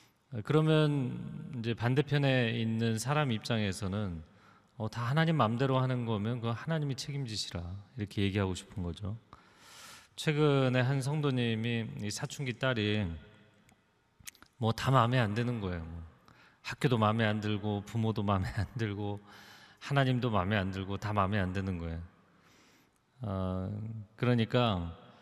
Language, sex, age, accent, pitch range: Korean, male, 30-49, native, 100-130 Hz